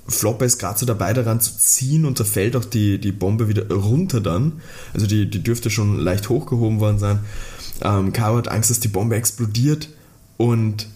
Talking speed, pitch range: 195 wpm, 110-130 Hz